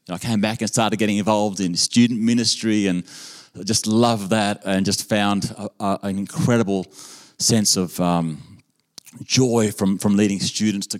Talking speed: 155 wpm